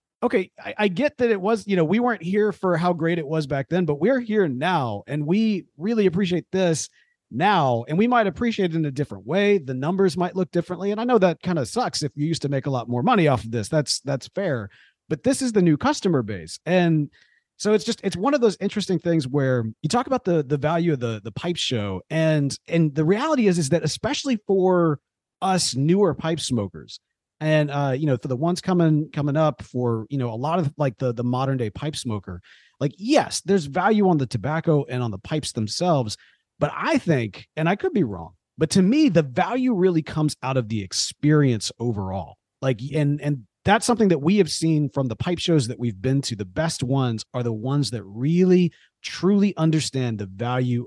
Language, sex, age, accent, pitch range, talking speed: English, male, 40-59, American, 130-185 Hz, 225 wpm